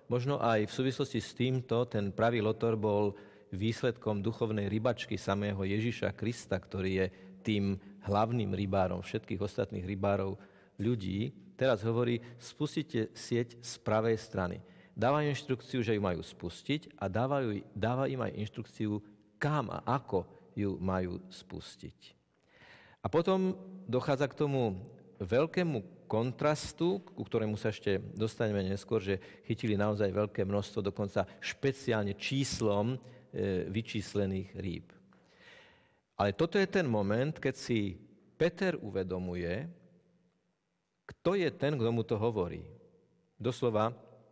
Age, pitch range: 50-69, 100-125 Hz